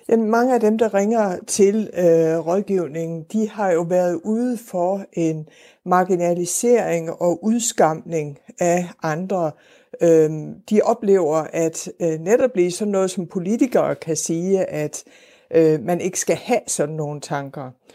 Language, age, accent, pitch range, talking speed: Danish, 60-79, native, 170-215 Hz, 125 wpm